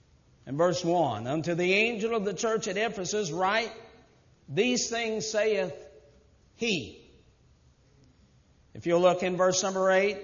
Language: English